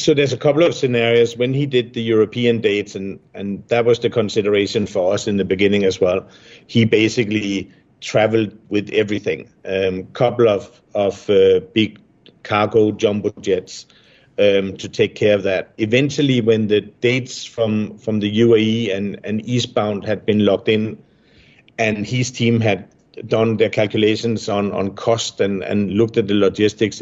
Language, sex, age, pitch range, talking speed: English, male, 50-69, 100-120 Hz, 170 wpm